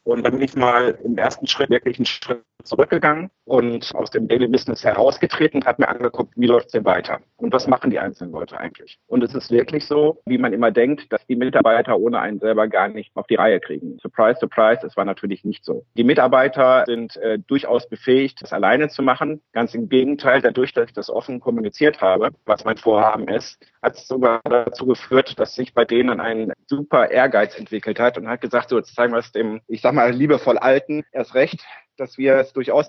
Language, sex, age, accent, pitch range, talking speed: German, male, 50-69, German, 120-155 Hz, 215 wpm